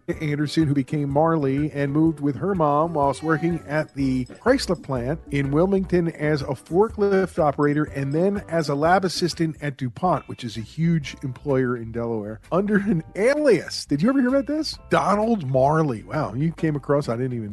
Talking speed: 185 wpm